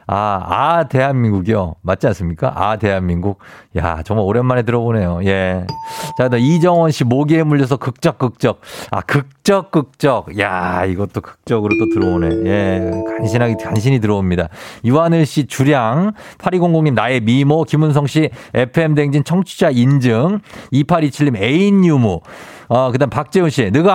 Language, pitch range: Korean, 110-160 Hz